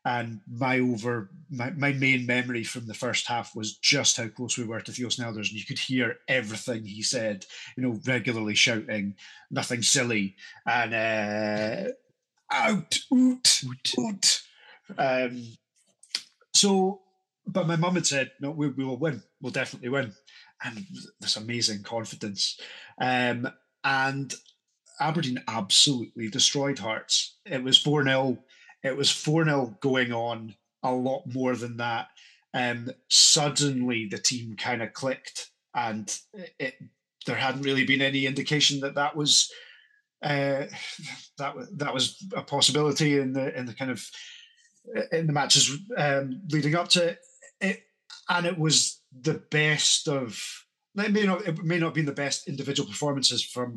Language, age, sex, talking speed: English, 30-49, male, 150 wpm